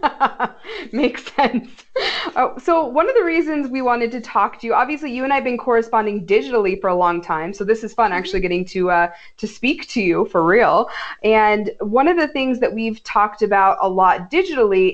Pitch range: 190-240 Hz